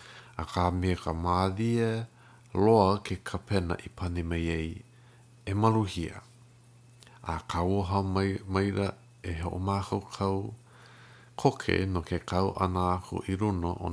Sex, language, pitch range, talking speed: male, English, 85-115 Hz, 110 wpm